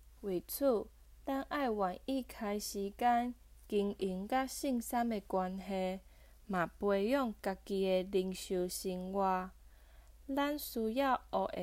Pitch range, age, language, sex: 185-250 Hz, 20-39, Chinese, female